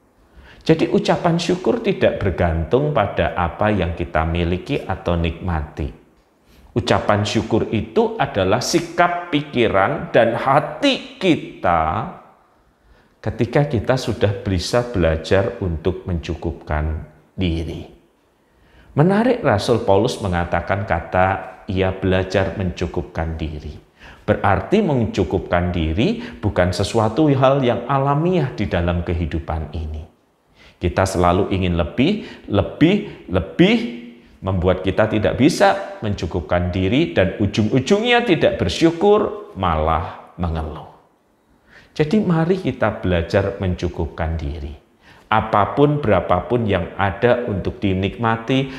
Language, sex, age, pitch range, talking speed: Malay, male, 40-59, 90-125 Hz, 100 wpm